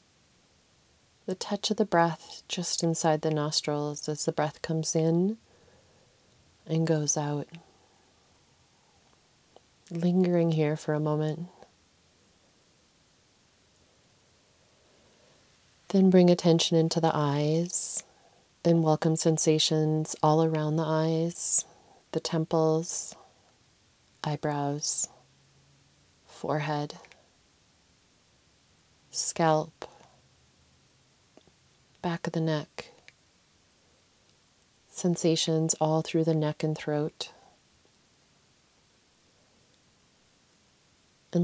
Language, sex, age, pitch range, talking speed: English, female, 30-49, 150-165 Hz, 75 wpm